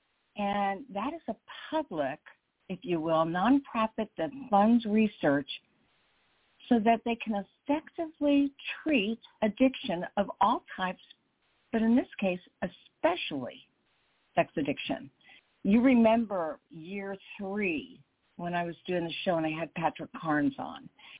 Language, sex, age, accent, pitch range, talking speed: English, female, 50-69, American, 180-255 Hz, 125 wpm